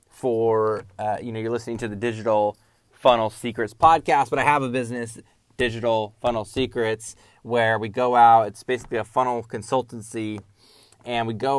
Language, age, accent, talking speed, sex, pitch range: English, 20-39, American, 165 wpm, male, 110-125 Hz